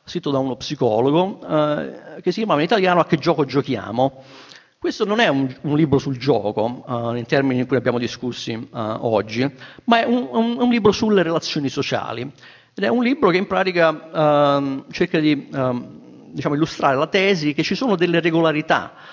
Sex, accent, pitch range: male, native, 130-165 Hz